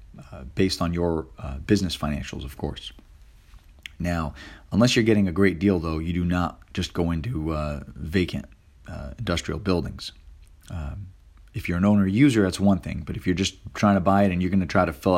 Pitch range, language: 80-100 Hz, English